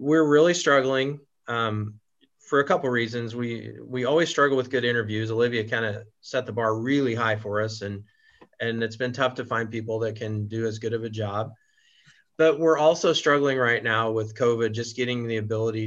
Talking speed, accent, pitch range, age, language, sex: 200 wpm, American, 110-130 Hz, 30-49, English, male